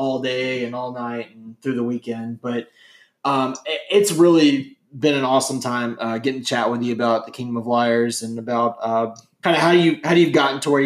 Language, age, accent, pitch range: English, 20-39, American, 140-175 Hz